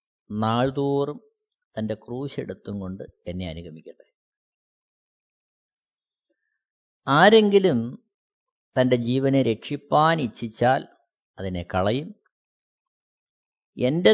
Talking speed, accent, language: 60 wpm, native, Malayalam